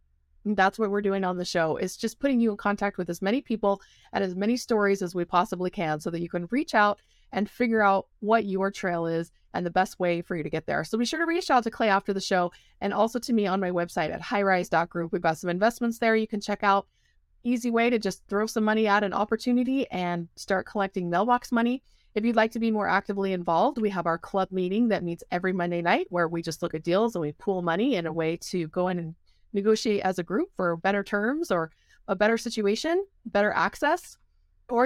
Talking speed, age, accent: 240 wpm, 30-49, American